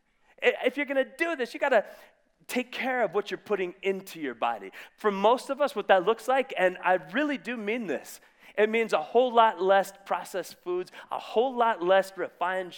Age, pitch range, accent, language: 30-49, 185-260 Hz, American, English